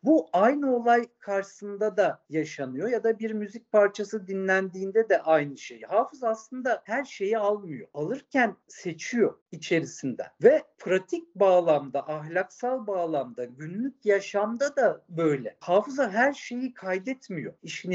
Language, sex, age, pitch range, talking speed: Turkish, male, 50-69, 185-255 Hz, 125 wpm